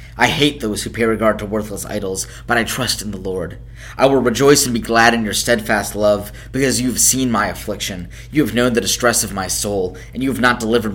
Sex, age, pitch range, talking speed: male, 20-39, 105-125 Hz, 240 wpm